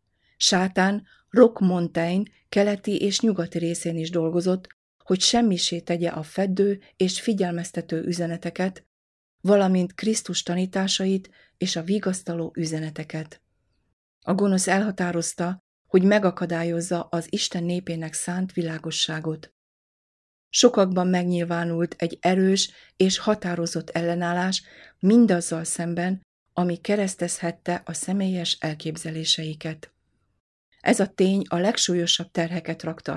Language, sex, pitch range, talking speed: Hungarian, female, 165-190 Hz, 100 wpm